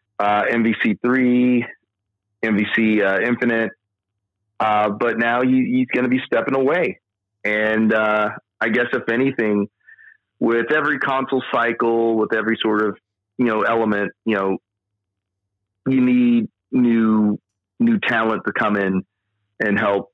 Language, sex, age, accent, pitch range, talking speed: English, male, 30-49, American, 95-110 Hz, 130 wpm